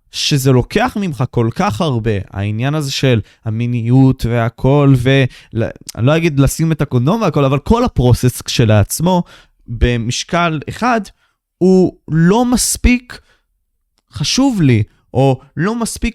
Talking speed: 120 wpm